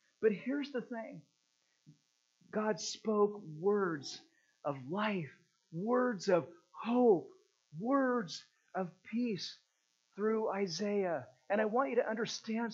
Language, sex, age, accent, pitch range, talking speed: English, male, 50-69, American, 185-255 Hz, 110 wpm